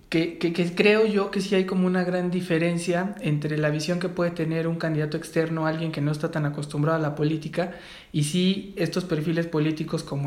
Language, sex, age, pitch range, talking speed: English, male, 20-39, 150-170 Hz, 210 wpm